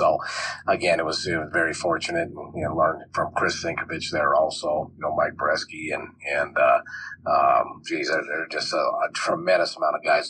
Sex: male